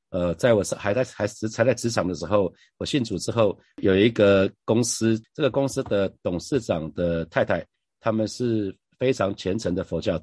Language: Chinese